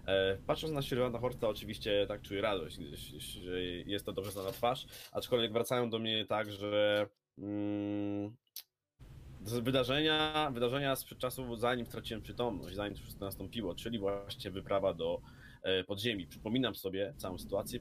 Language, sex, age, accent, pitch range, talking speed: Polish, male, 20-39, native, 100-120 Hz, 140 wpm